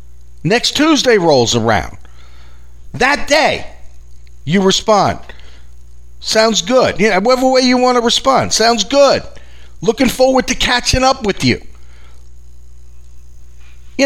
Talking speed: 110 wpm